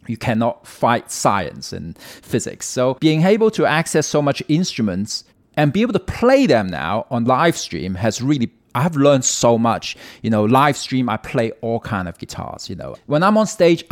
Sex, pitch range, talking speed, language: male, 115-150 Hz, 205 wpm, English